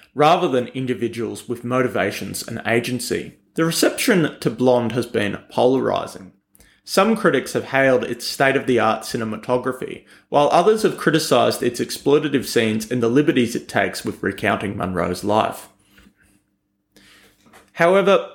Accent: Australian